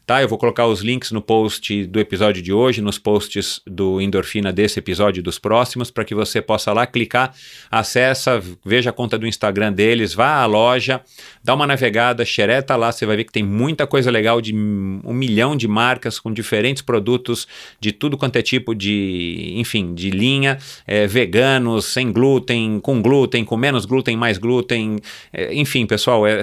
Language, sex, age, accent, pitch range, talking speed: Portuguese, male, 40-59, Brazilian, 105-120 Hz, 190 wpm